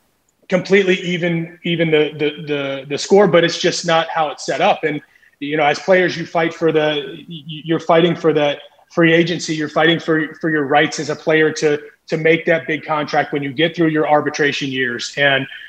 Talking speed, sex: 205 wpm, male